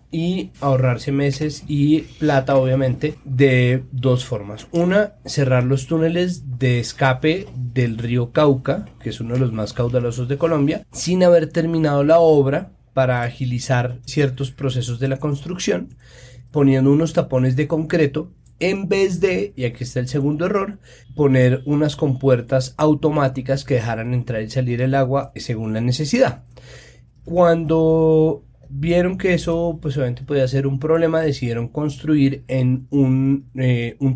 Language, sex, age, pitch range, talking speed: Spanish, male, 30-49, 125-155 Hz, 145 wpm